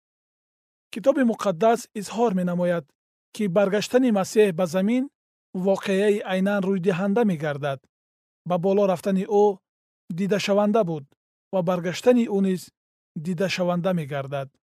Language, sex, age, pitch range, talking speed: Persian, male, 40-59, 175-215 Hz, 120 wpm